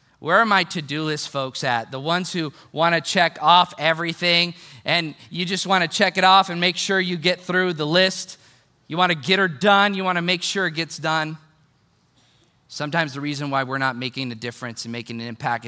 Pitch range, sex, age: 140-225 Hz, male, 30-49